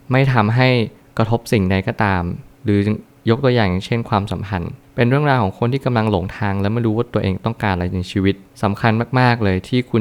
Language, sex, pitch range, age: Thai, male, 100-120 Hz, 20-39